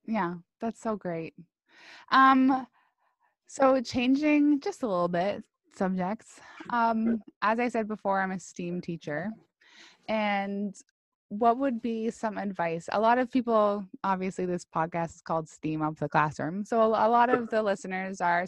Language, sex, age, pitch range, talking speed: English, female, 20-39, 175-225 Hz, 155 wpm